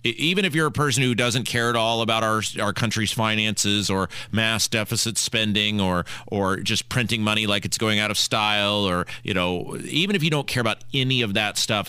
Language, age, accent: English, 40-59, American